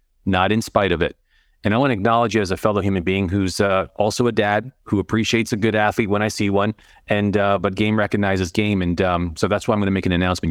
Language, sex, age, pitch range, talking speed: English, male, 40-59, 95-110 Hz, 270 wpm